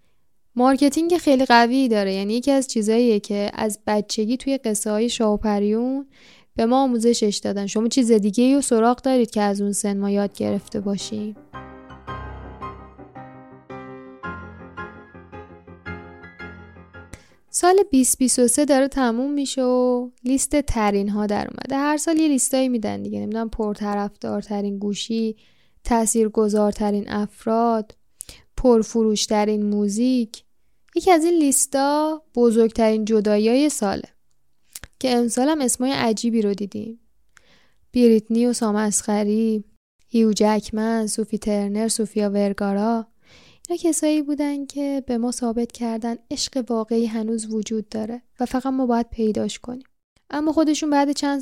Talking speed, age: 120 wpm, 10-29